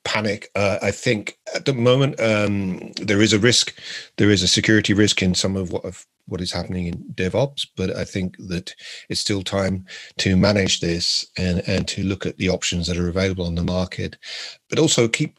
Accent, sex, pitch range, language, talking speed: British, male, 90-105 Hz, English, 205 wpm